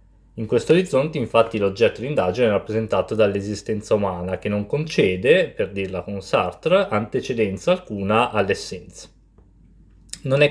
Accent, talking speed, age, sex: native, 130 wpm, 20-39, male